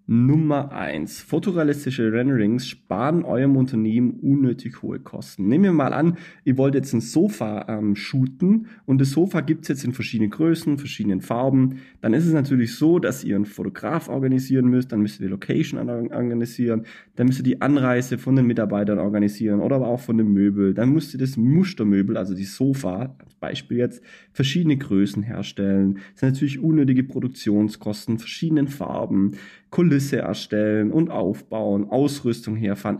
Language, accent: German, German